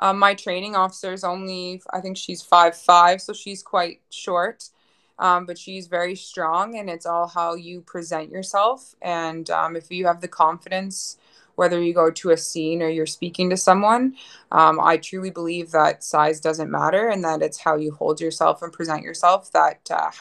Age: 20-39